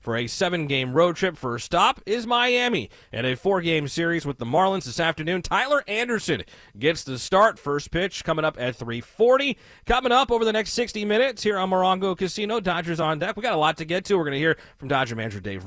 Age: 30-49